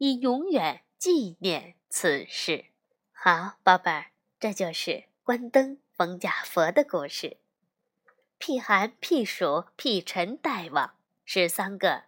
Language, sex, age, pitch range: Chinese, female, 20-39, 195-275 Hz